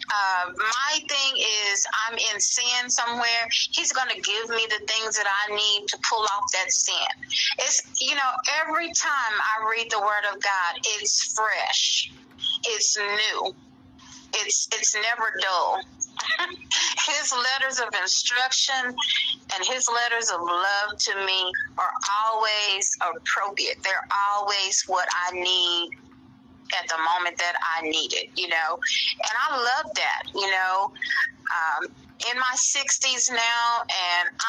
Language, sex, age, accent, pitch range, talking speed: English, female, 30-49, American, 180-245 Hz, 140 wpm